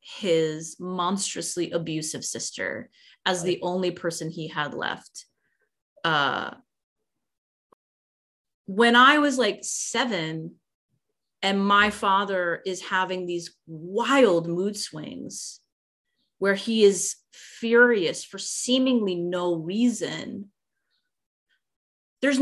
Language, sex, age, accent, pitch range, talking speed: English, female, 30-49, American, 175-240 Hz, 95 wpm